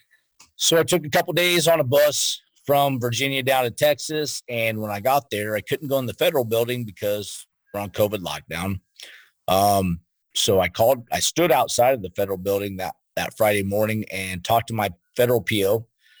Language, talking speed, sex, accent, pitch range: English, 195 wpm, male, American, 100-130 Hz